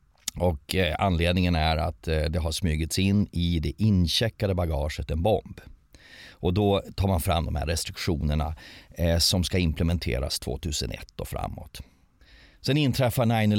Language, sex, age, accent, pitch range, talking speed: English, male, 30-49, Swedish, 85-105 Hz, 135 wpm